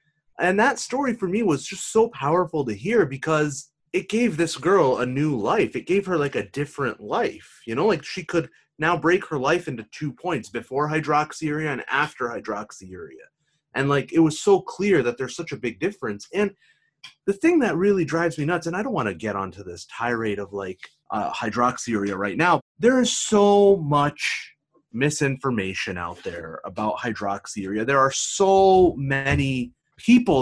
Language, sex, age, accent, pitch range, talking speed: English, male, 30-49, American, 140-205 Hz, 180 wpm